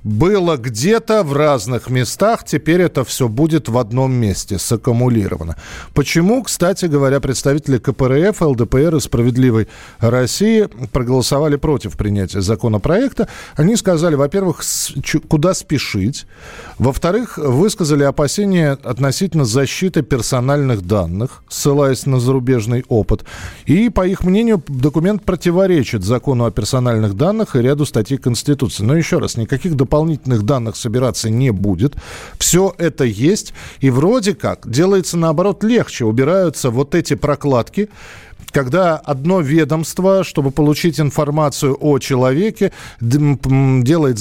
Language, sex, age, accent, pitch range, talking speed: Russian, male, 40-59, native, 125-165 Hz, 120 wpm